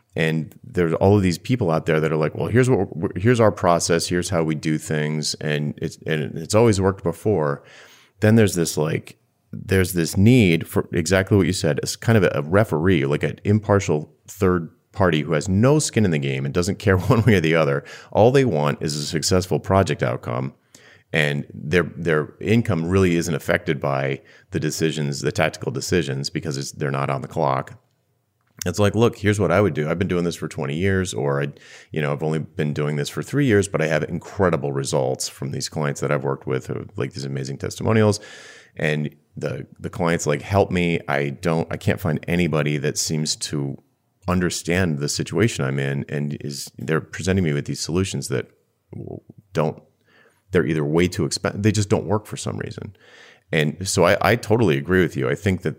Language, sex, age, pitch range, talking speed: English, male, 30-49, 75-100 Hz, 210 wpm